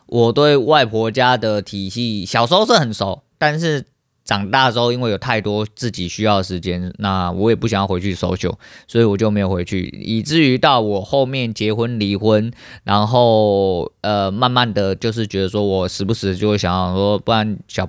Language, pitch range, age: Chinese, 95-115 Hz, 20-39